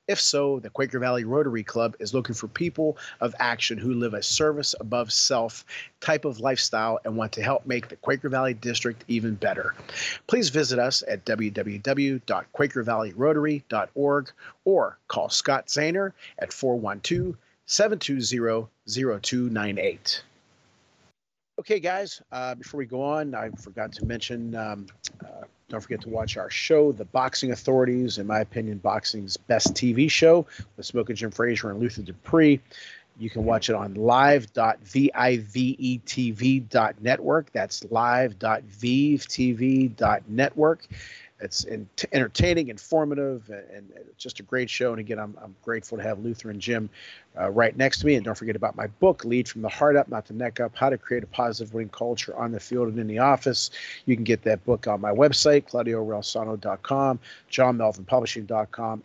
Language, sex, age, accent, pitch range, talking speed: English, male, 40-59, American, 110-140 Hz, 155 wpm